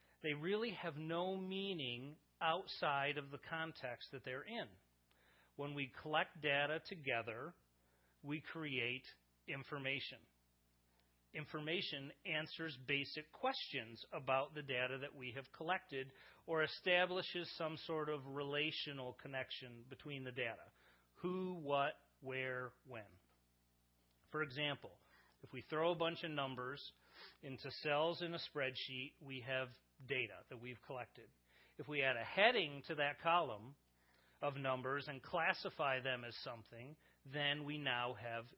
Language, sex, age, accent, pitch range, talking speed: English, male, 40-59, American, 115-155 Hz, 130 wpm